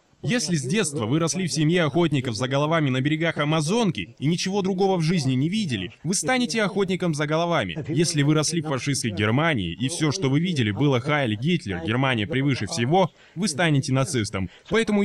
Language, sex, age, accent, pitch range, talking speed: Russian, male, 10-29, native, 135-190 Hz, 185 wpm